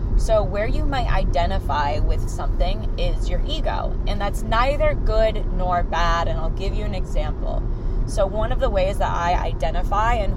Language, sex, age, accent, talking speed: English, female, 20-39, American, 180 wpm